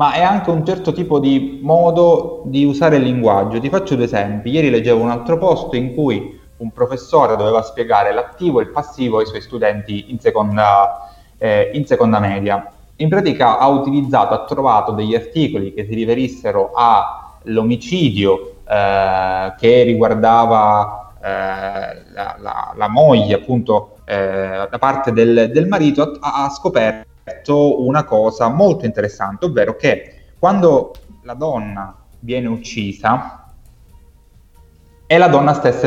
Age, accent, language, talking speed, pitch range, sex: 20-39, native, Italian, 140 wpm, 100-145 Hz, male